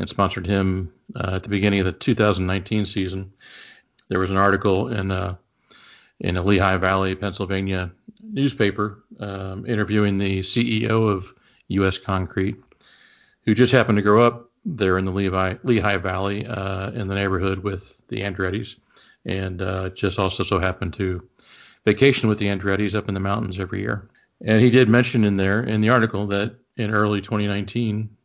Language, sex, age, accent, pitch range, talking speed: English, male, 40-59, American, 95-105 Hz, 165 wpm